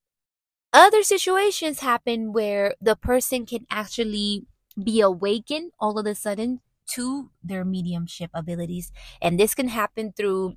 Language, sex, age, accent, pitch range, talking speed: English, female, 20-39, American, 190-265 Hz, 130 wpm